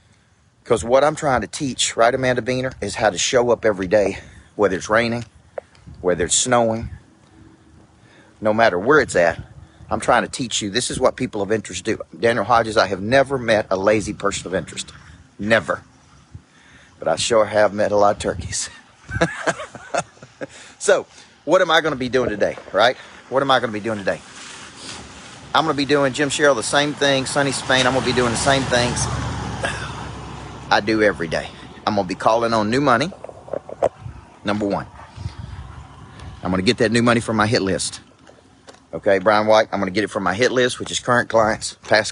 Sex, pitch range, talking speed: male, 105-125 Hz, 195 wpm